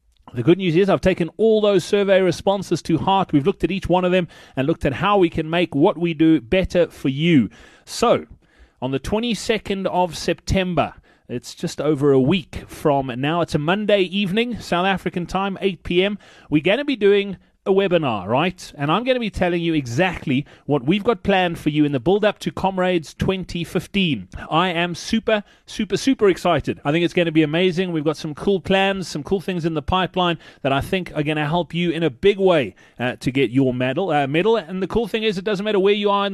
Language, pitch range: English, 155-195 Hz